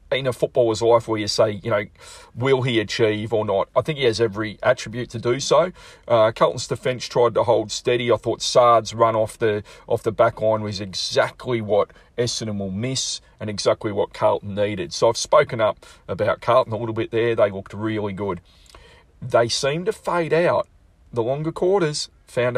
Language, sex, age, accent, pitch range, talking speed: English, male, 40-59, Australian, 105-125 Hz, 195 wpm